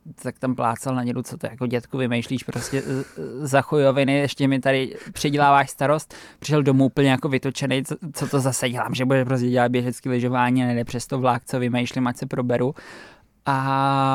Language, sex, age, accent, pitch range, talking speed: Czech, male, 20-39, native, 125-140 Hz, 185 wpm